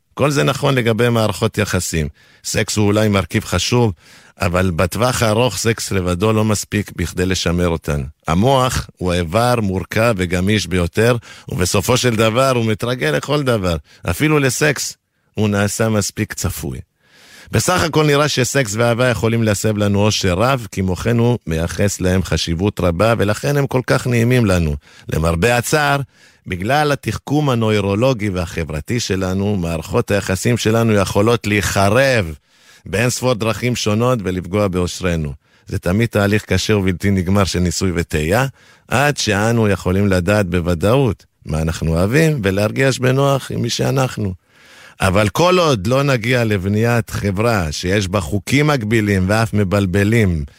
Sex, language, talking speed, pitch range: male, Hebrew, 135 wpm, 95-120 Hz